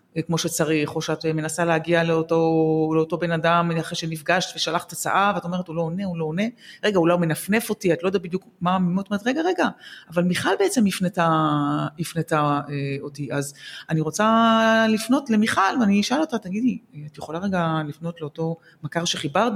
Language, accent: Hebrew, native